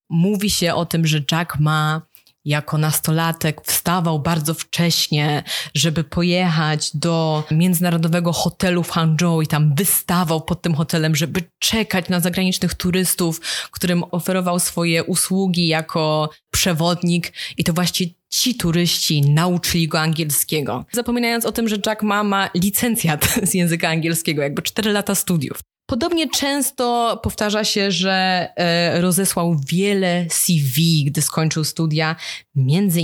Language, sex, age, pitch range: Polish, female, 20-39, 165-195 Hz